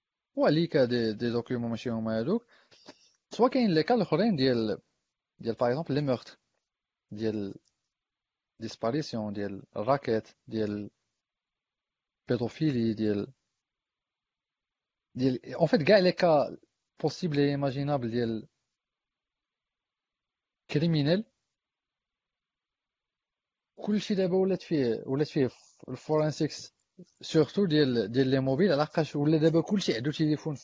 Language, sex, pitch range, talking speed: Arabic, male, 125-175 Hz, 75 wpm